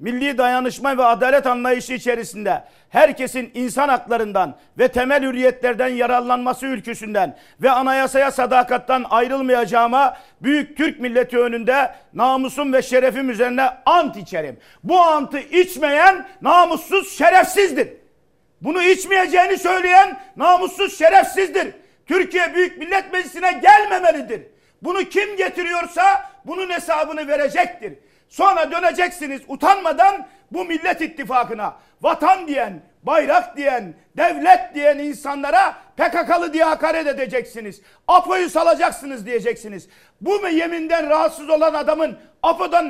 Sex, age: male, 50-69